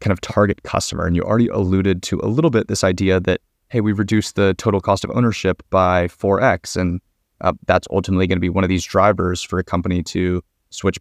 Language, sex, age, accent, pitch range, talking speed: English, male, 20-39, American, 95-105 Hz, 225 wpm